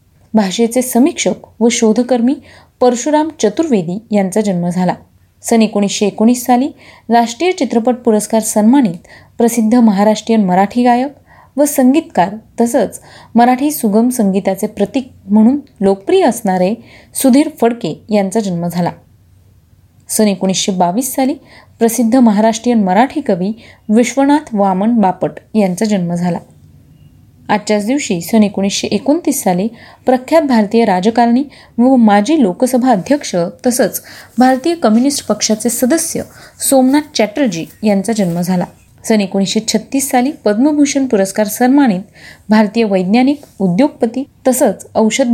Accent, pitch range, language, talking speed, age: native, 200-255 Hz, Marathi, 110 wpm, 30-49